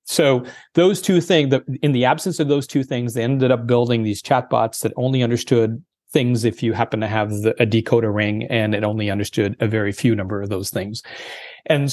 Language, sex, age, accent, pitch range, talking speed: English, male, 40-59, American, 110-140 Hz, 210 wpm